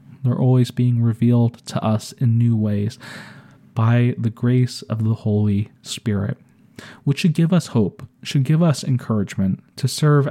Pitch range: 115-145 Hz